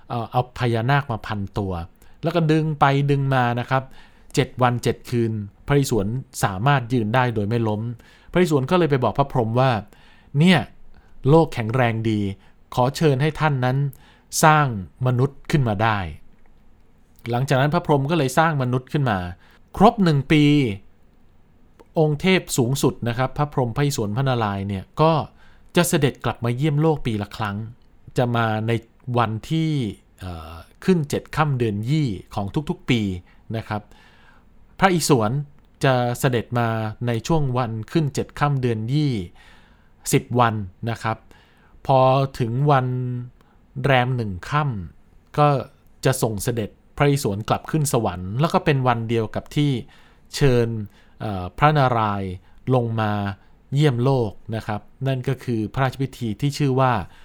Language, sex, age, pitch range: Thai, male, 20-39, 105-140 Hz